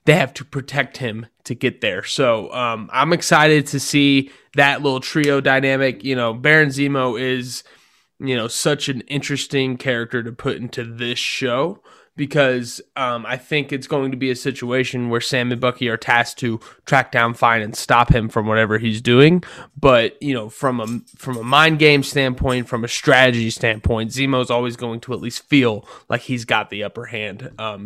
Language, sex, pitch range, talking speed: English, male, 120-140 Hz, 195 wpm